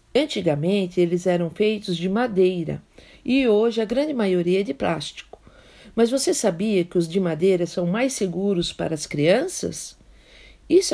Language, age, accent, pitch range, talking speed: Portuguese, 50-69, Brazilian, 180-240 Hz, 155 wpm